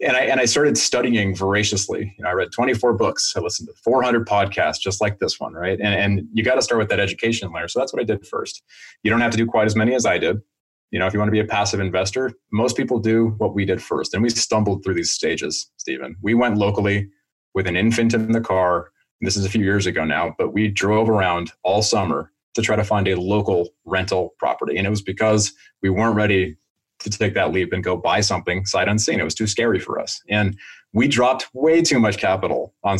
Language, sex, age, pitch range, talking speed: English, male, 30-49, 95-115 Hz, 245 wpm